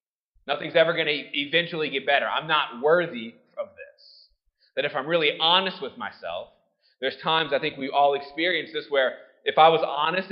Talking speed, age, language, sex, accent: 185 wpm, 20-39, English, male, American